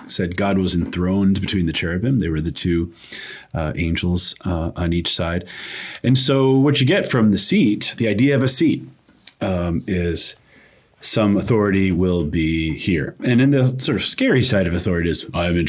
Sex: male